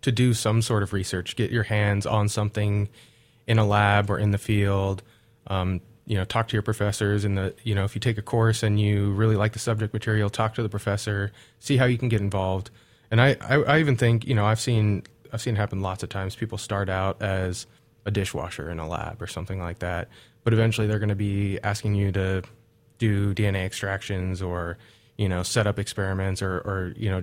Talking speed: 225 wpm